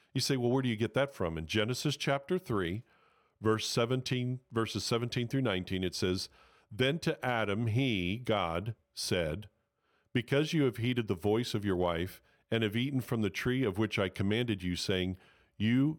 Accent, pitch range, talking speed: American, 95-125 Hz, 185 wpm